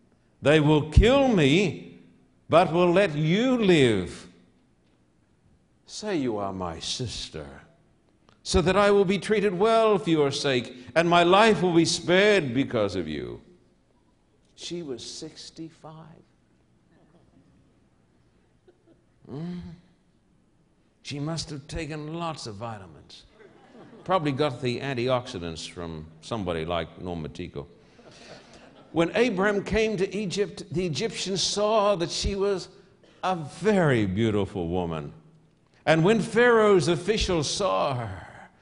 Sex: male